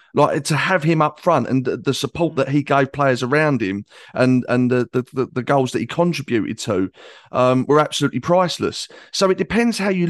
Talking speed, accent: 200 wpm, British